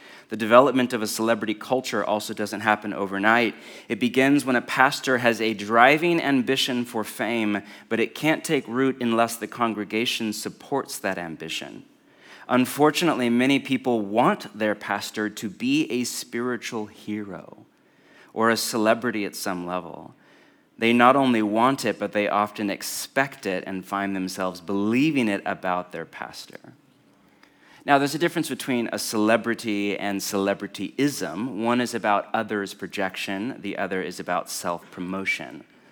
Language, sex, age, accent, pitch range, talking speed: English, male, 30-49, American, 100-125 Hz, 145 wpm